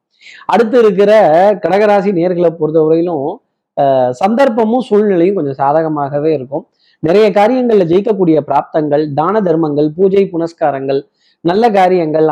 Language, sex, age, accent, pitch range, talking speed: Tamil, male, 30-49, native, 160-200 Hz, 100 wpm